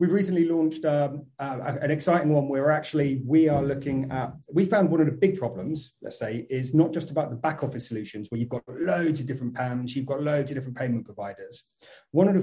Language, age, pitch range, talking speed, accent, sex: English, 30-49, 120-150 Hz, 230 wpm, British, male